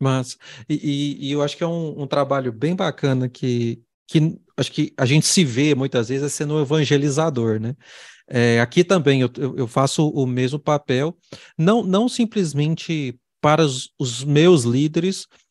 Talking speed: 165 wpm